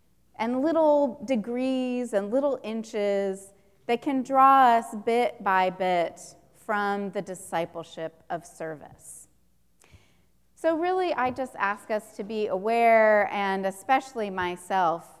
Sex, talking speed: female, 120 wpm